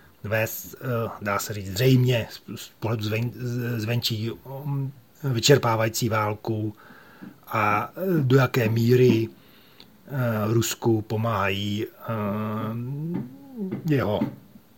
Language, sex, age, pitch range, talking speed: Czech, male, 40-59, 110-135 Hz, 65 wpm